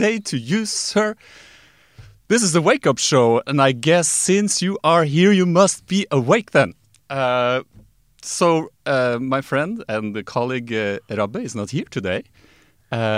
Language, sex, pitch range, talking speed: English, male, 115-150 Hz, 165 wpm